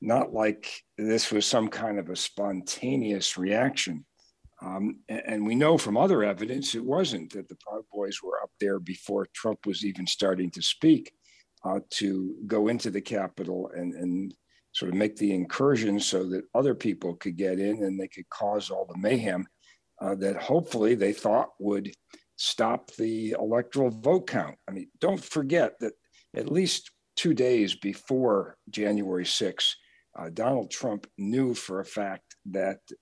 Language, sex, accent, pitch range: English, male, American, 95-110 Hz